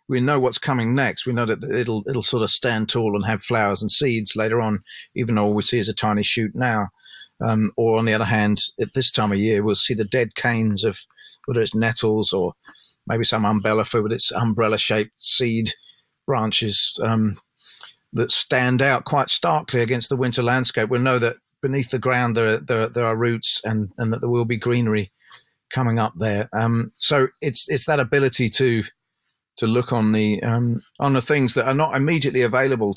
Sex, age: male, 40-59